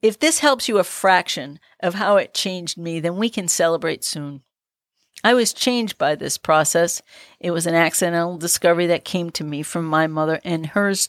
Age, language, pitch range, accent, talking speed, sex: 50-69, English, 160-190 Hz, American, 195 wpm, female